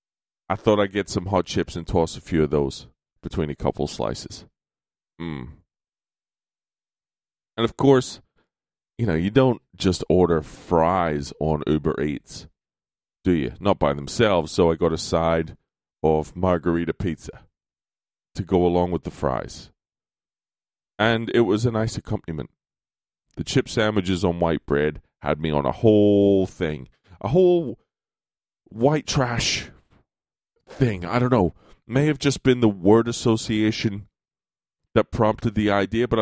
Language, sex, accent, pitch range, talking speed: English, male, American, 85-120 Hz, 145 wpm